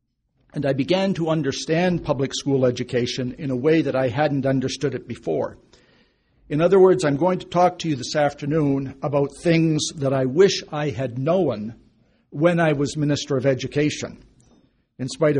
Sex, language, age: male, English, 60-79